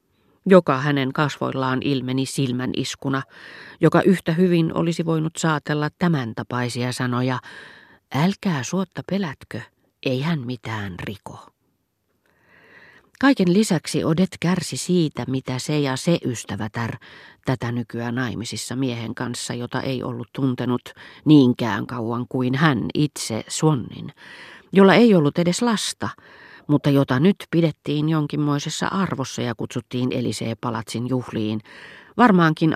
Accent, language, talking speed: native, Finnish, 115 wpm